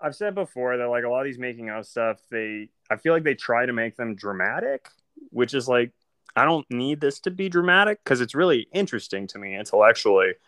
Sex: male